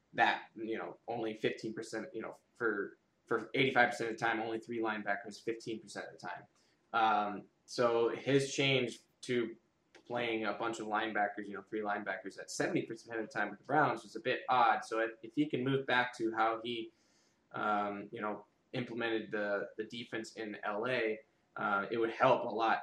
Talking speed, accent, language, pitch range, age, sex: 185 wpm, American, English, 105-115 Hz, 20-39, male